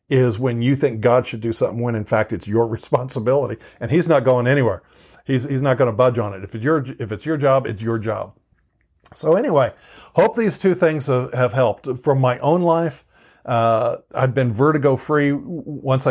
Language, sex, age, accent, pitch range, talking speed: English, male, 50-69, American, 120-140 Hz, 205 wpm